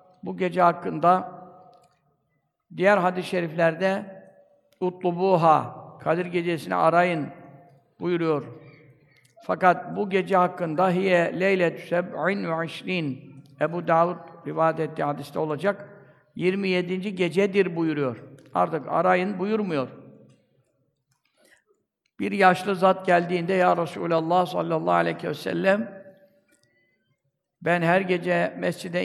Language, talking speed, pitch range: Turkish, 95 wpm, 165-185 Hz